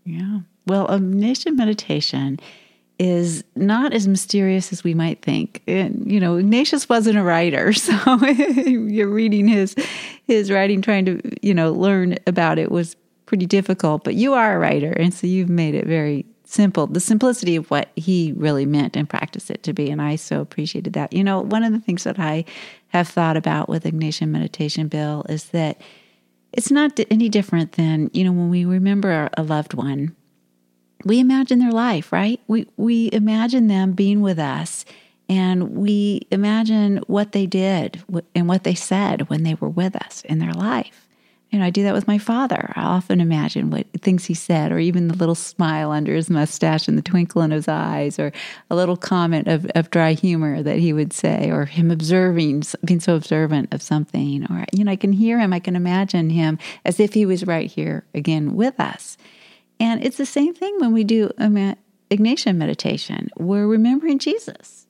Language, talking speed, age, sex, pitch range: English, 190 wpm, 40-59, female, 160-215 Hz